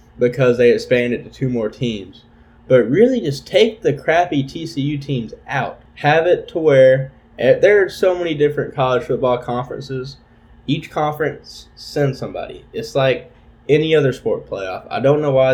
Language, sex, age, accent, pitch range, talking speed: English, male, 10-29, American, 115-145 Hz, 170 wpm